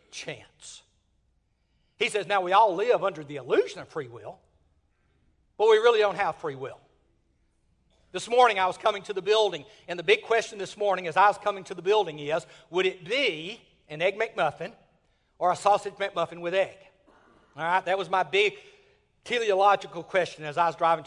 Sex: male